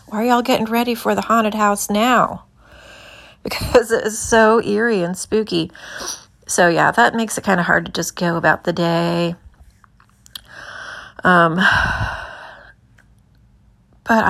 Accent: American